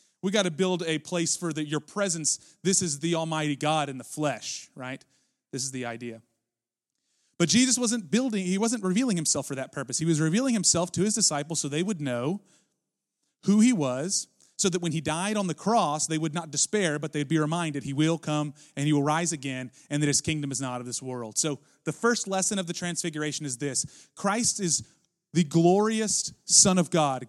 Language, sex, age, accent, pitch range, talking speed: English, male, 30-49, American, 135-180 Hz, 210 wpm